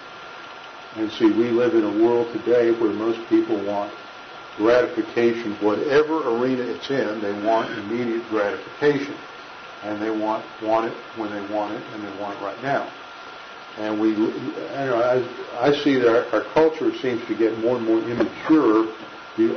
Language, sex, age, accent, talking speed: English, male, 50-69, American, 170 wpm